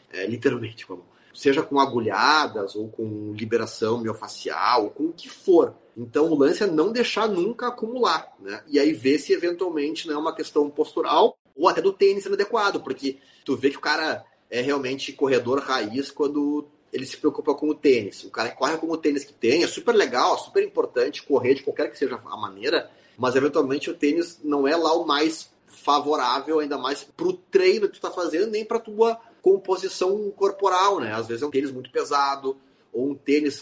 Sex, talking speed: male, 195 wpm